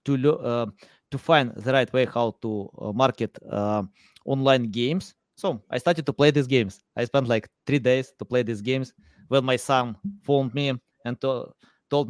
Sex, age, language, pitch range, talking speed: male, 20-39, English, 125-165 Hz, 190 wpm